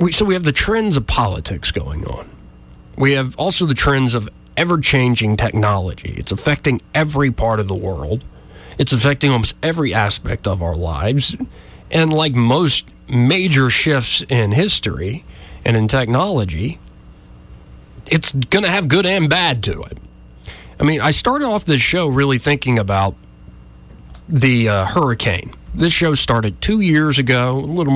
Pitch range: 100-150 Hz